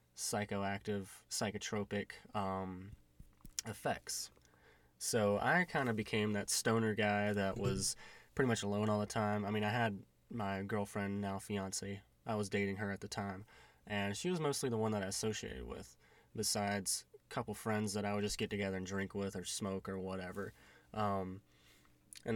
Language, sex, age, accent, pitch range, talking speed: English, male, 20-39, American, 95-110 Hz, 170 wpm